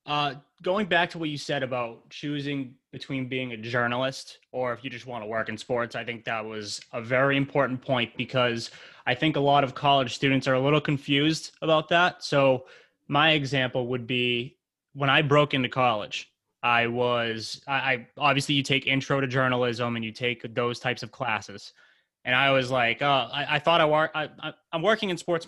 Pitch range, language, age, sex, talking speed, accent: 120-145 Hz, English, 20-39, male, 205 wpm, American